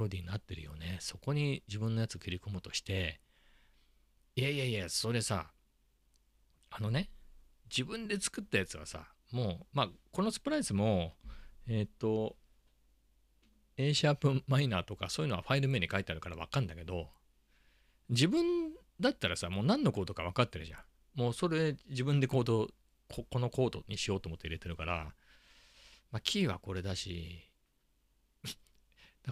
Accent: native